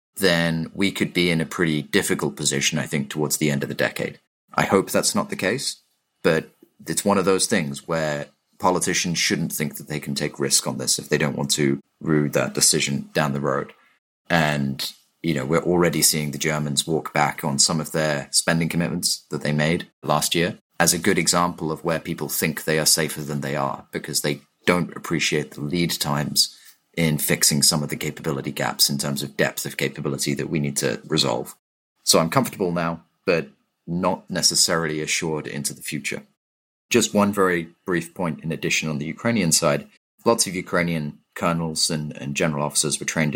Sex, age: male, 30-49